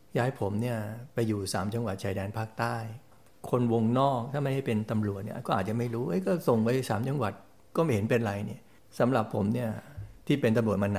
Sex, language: male, Thai